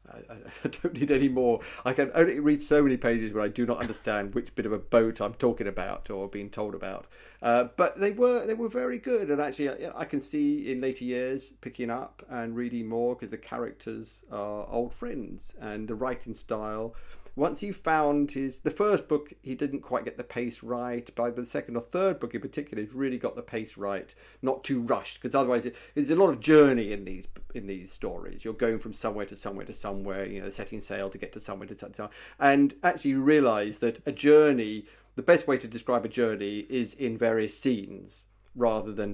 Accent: British